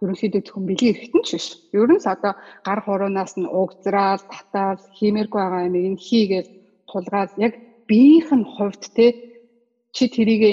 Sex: female